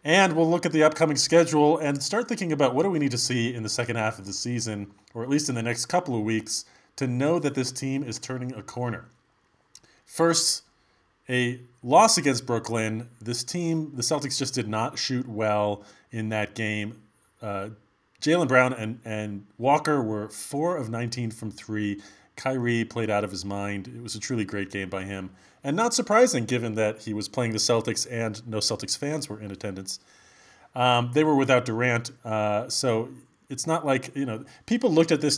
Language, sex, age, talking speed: English, male, 30-49, 200 wpm